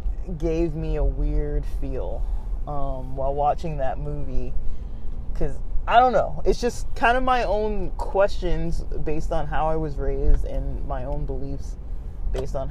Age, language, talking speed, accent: 20-39, English, 155 wpm, American